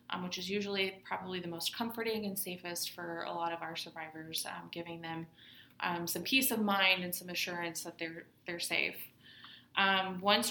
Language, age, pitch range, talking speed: English, 20-39, 175-200 Hz, 190 wpm